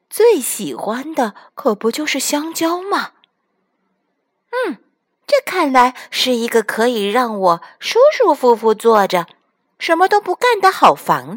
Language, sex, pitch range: Chinese, female, 195-305 Hz